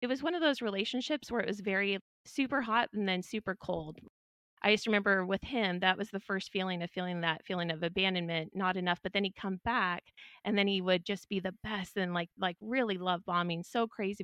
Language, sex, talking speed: English, female, 235 wpm